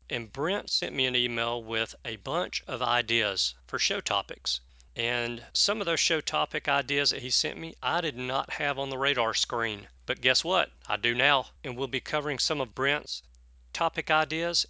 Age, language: 40-59, English